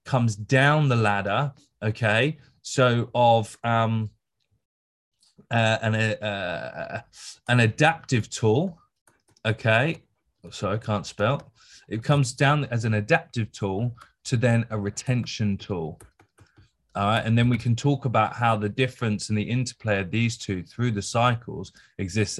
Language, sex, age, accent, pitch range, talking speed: English, male, 20-39, British, 105-130 Hz, 140 wpm